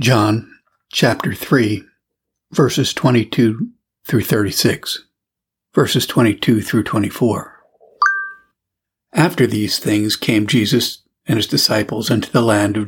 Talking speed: 105 wpm